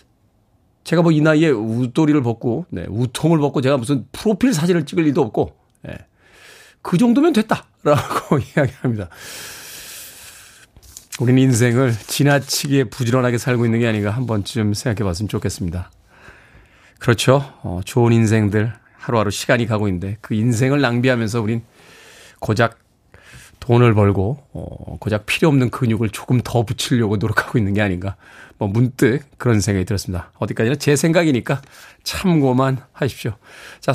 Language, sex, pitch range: Korean, male, 110-155 Hz